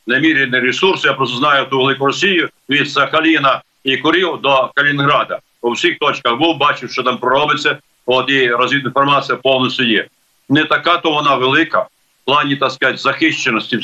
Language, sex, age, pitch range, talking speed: Ukrainian, male, 50-69, 130-155 Hz, 155 wpm